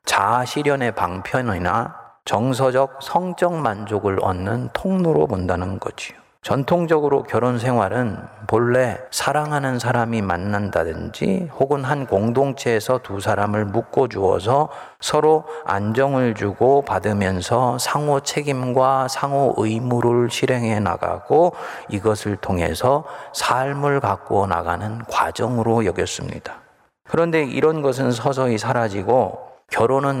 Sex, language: male, Korean